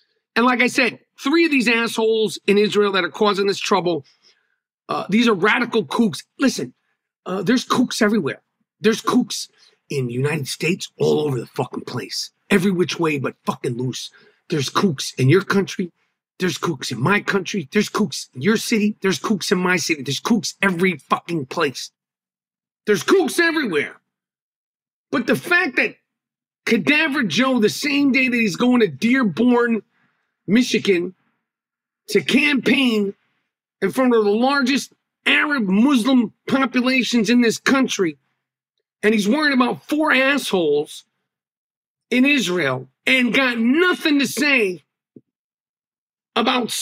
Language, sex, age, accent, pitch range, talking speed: English, male, 50-69, American, 195-260 Hz, 145 wpm